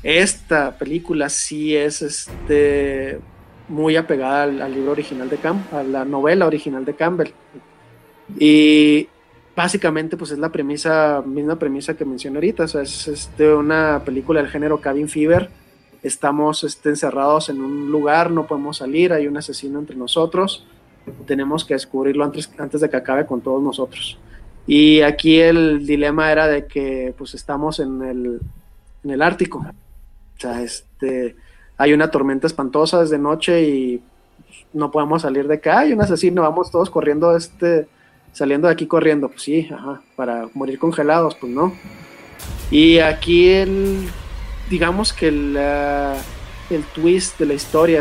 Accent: Mexican